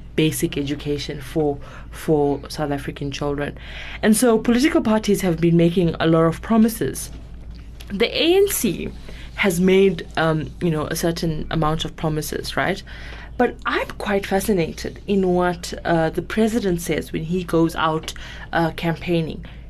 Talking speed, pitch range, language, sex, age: 145 wpm, 160-195 Hz, English, female, 20-39